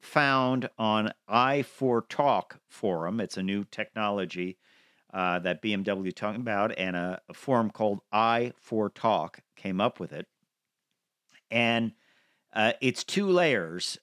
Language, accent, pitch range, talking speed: English, American, 100-120 Hz, 120 wpm